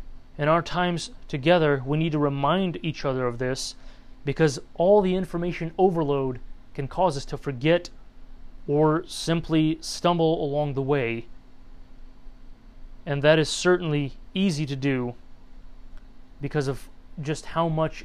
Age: 30-49